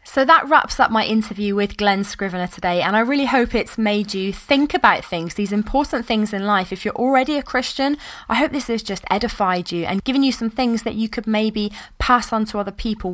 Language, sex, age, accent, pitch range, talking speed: English, female, 20-39, British, 190-240 Hz, 235 wpm